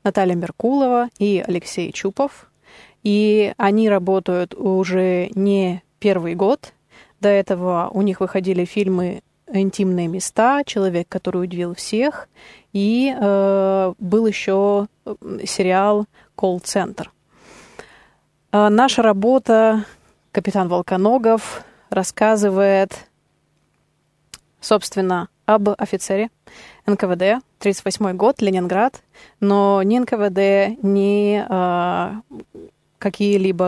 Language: Russian